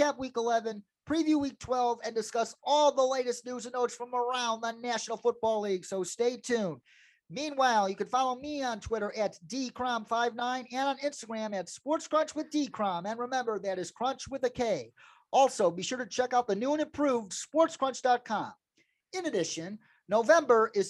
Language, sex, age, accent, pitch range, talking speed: English, male, 40-59, American, 220-275 Hz, 175 wpm